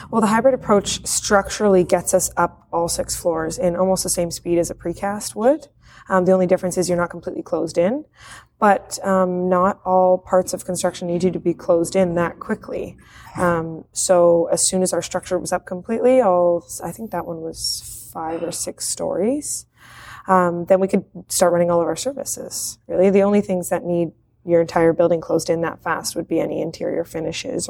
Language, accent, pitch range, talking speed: English, American, 170-190 Hz, 200 wpm